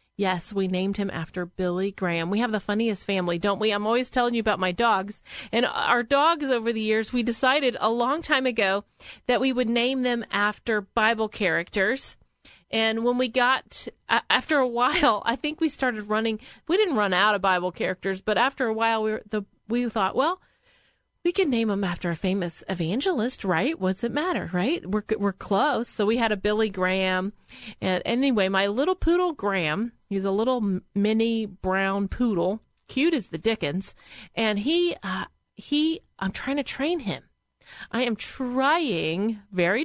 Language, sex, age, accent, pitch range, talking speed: English, female, 30-49, American, 195-245 Hz, 180 wpm